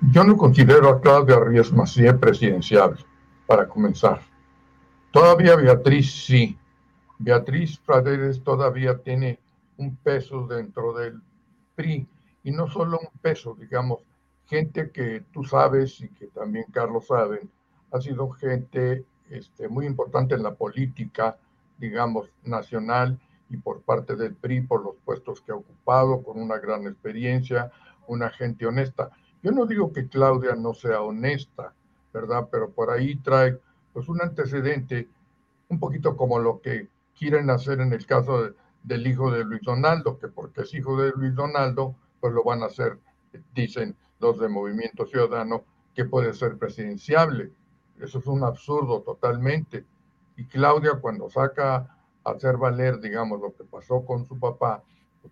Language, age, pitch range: Spanish, 60-79, 120-140 Hz